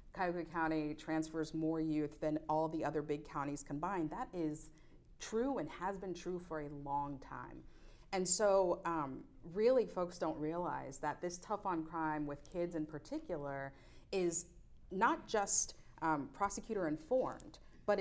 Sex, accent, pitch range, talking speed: female, American, 155-190 Hz, 145 wpm